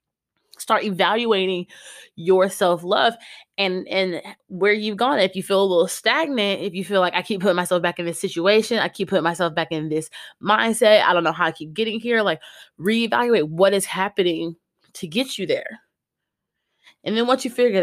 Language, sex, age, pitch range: English, female, 20-39, 180-225 Hz